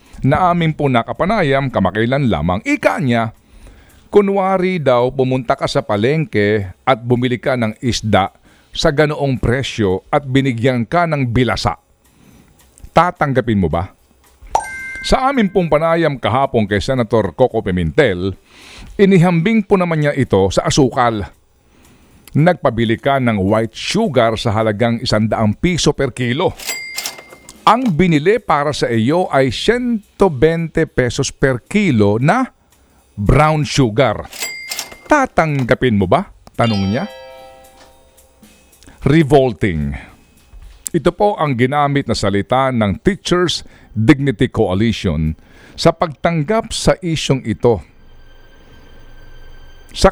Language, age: Filipino, 50-69